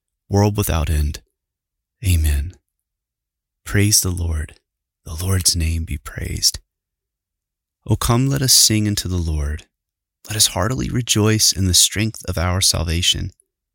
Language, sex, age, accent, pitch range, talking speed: English, male, 30-49, American, 85-100 Hz, 130 wpm